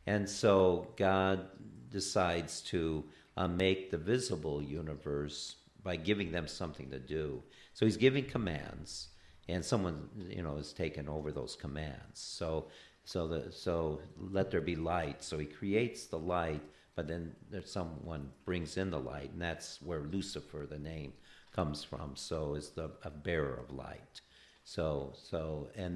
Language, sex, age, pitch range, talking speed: English, male, 50-69, 75-95 Hz, 155 wpm